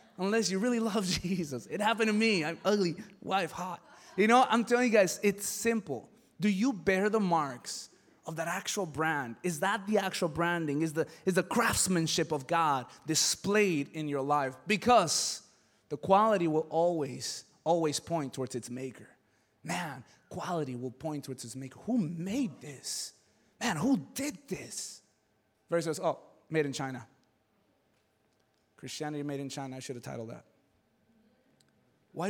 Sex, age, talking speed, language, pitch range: male, 20-39, 160 wpm, English, 135-190 Hz